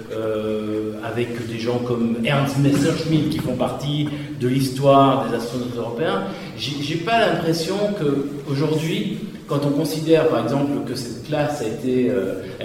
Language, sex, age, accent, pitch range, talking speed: French, male, 40-59, French, 115-145 Hz, 140 wpm